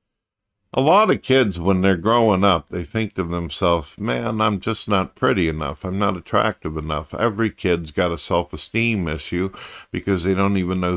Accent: American